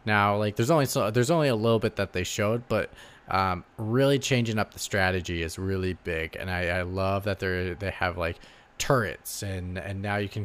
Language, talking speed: English, 220 wpm